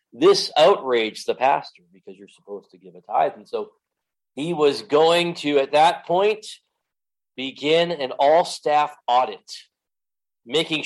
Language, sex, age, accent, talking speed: English, male, 40-59, American, 145 wpm